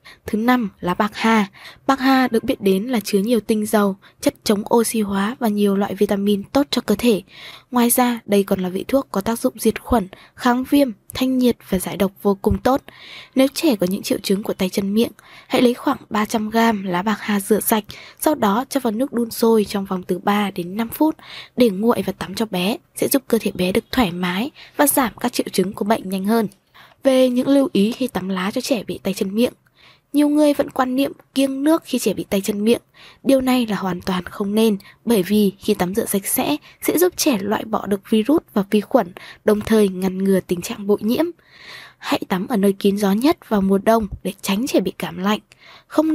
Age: 20-39